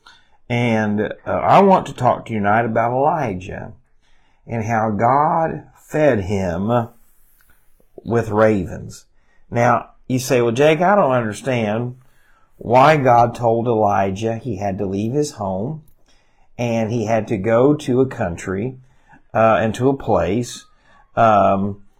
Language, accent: English, American